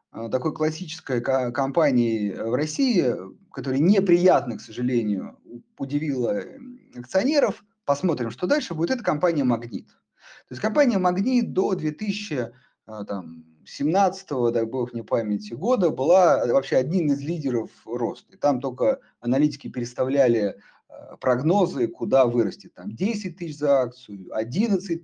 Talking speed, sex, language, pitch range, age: 115 wpm, male, Russian, 125-195 Hz, 30-49